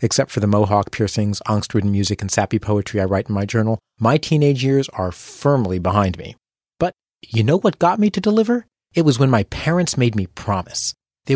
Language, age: English, 30-49